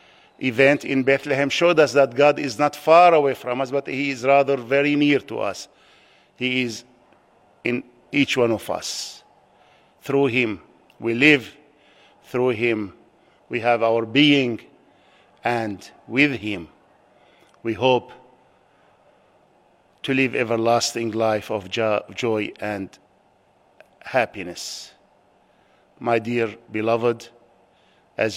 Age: 50-69